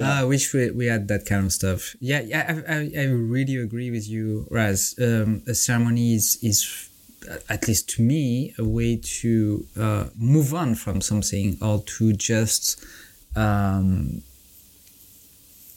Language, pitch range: English, 105-125 Hz